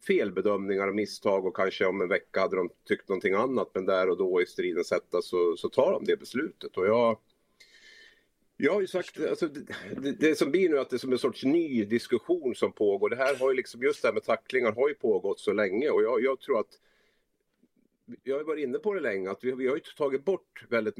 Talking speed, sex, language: 230 wpm, male, English